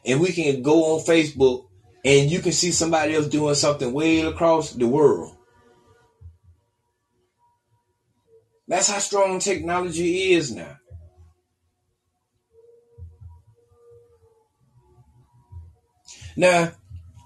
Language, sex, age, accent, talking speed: English, male, 30-49, American, 85 wpm